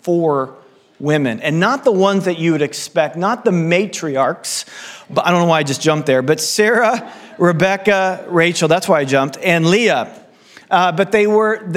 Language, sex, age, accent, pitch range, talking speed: English, male, 40-59, American, 145-180 Hz, 185 wpm